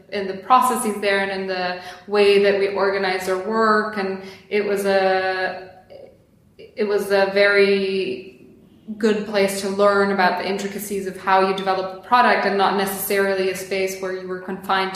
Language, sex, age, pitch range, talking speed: English, female, 20-39, 190-205 Hz, 175 wpm